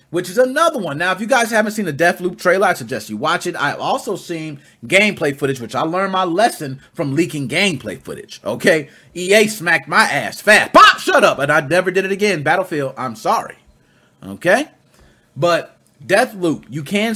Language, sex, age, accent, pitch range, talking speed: English, male, 30-49, American, 140-230 Hz, 190 wpm